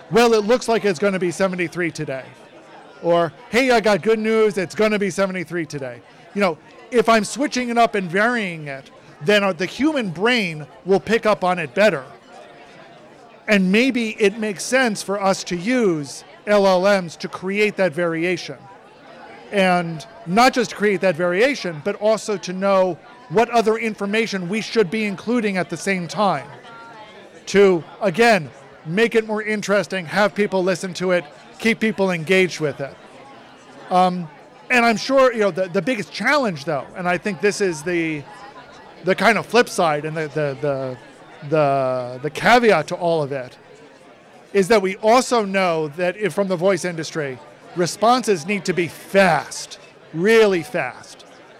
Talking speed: 165 wpm